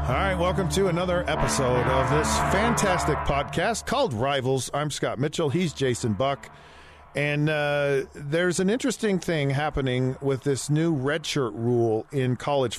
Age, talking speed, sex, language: 40-59, 155 wpm, male, English